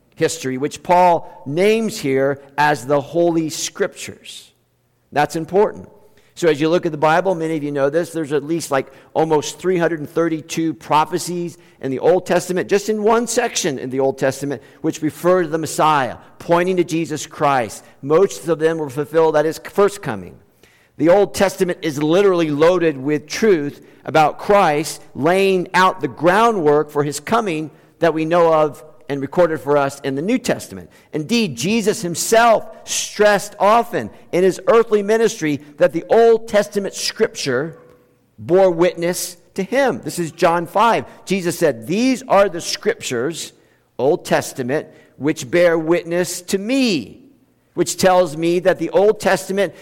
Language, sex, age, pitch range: English, male, 50-69, 150-190 Hz